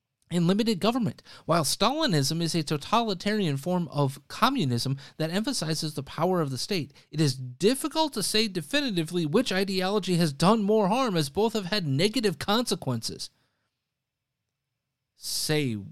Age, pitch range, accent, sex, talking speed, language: 30-49, 130-185 Hz, American, male, 140 wpm, English